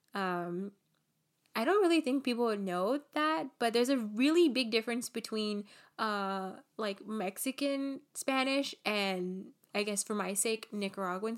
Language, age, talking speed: English, 10-29, 140 wpm